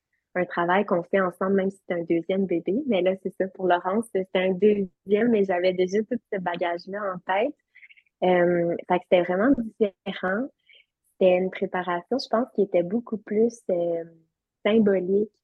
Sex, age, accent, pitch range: female, 20-39, Canadian, 175-205 Hz